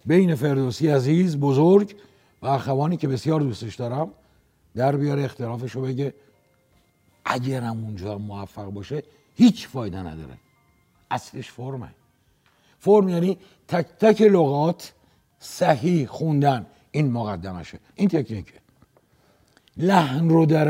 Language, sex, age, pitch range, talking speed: Persian, male, 60-79, 100-150 Hz, 110 wpm